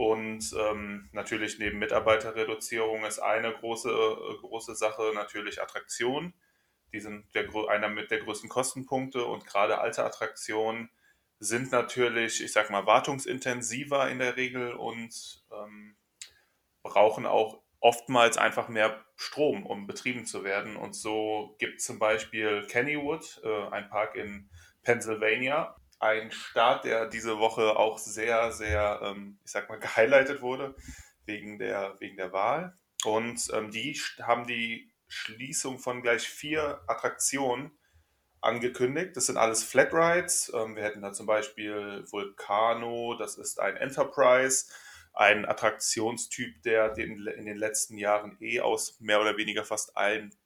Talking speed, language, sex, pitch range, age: 135 wpm, German, male, 105-120 Hz, 20-39